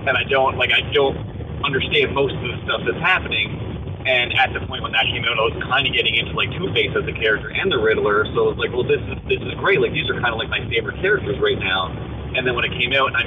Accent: American